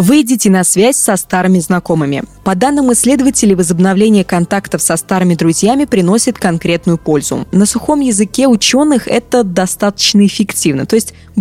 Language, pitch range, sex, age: Russian, 175-230 Hz, female, 20-39